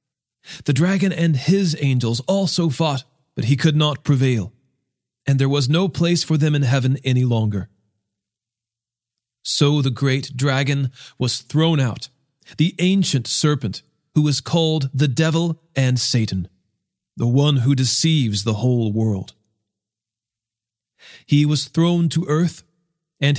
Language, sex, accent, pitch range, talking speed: English, male, American, 125-170 Hz, 135 wpm